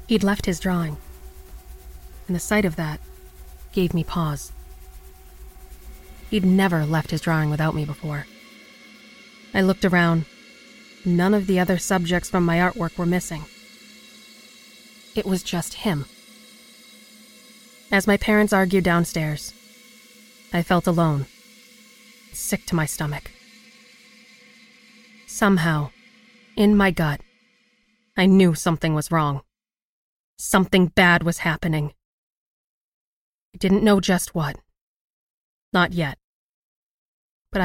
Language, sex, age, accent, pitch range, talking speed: English, female, 30-49, American, 150-215 Hz, 110 wpm